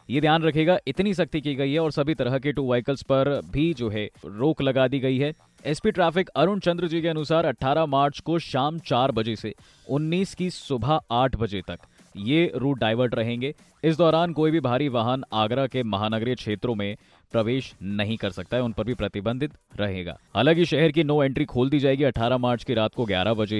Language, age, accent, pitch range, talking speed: Hindi, 20-39, native, 115-150 Hz, 115 wpm